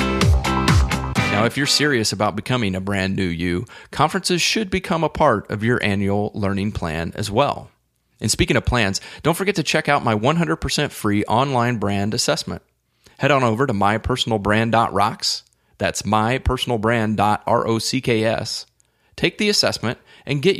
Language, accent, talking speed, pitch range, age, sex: English, American, 145 wpm, 100-140 Hz, 30-49, male